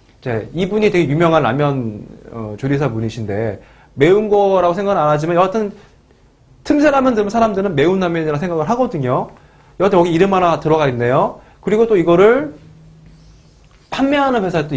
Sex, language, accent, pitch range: male, Korean, native, 130-195 Hz